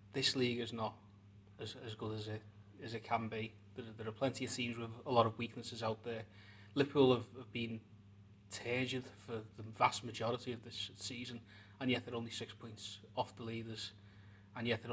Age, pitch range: 30-49, 105-125 Hz